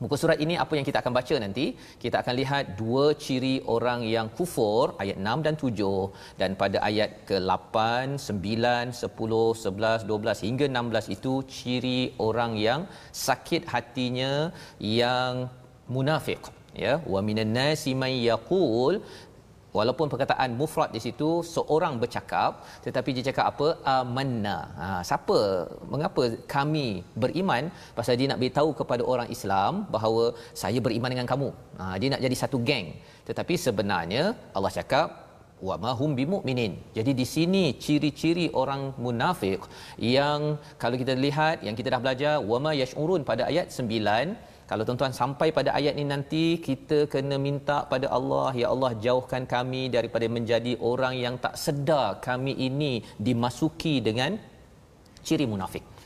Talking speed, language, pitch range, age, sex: 145 wpm, Malayalam, 115-145 Hz, 40-59, male